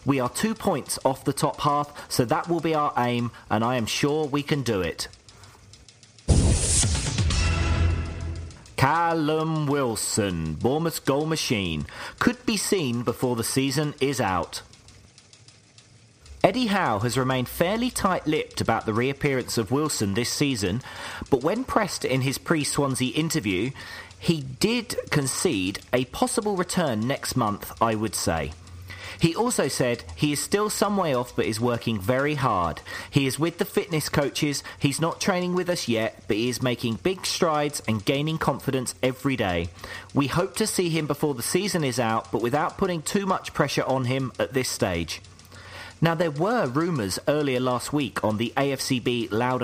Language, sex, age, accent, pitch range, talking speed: English, male, 40-59, British, 110-155 Hz, 165 wpm